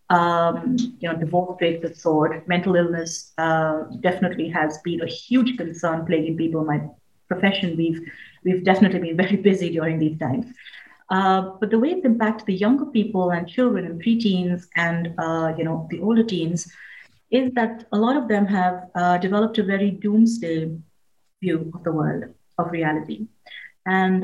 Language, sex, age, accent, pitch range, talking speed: English, female, 30-49, Indian, 170-205 Hz, 170 wpm